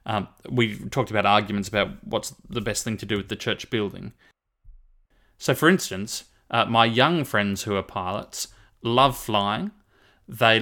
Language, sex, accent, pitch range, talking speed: English, male, Australian, 105-130 Hz, 170 wpm